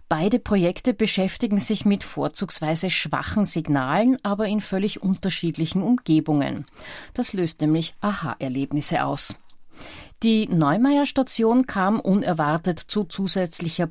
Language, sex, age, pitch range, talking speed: German, female, 50-69, 155-200 Hz, 110 wpm